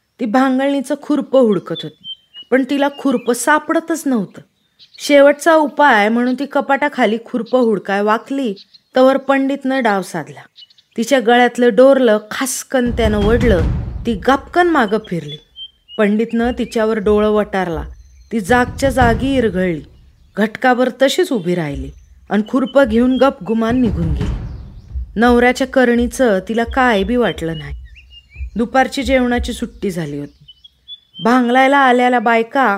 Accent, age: native, 30-49